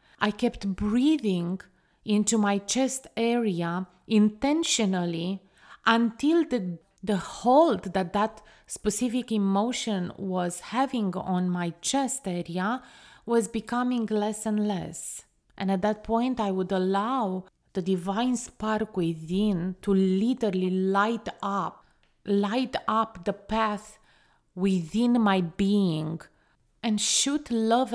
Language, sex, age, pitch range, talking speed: English, female, 30-49, 190-230 Hz, 110 wpm